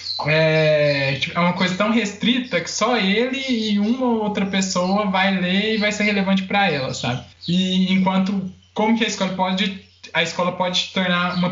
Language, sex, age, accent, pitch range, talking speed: Portuguese, male, 20-39, Brazilian, 145-185 Hz, 175 wpm